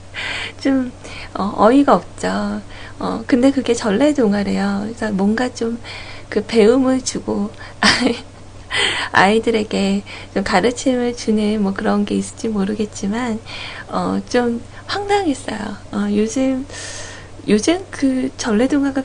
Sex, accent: female, native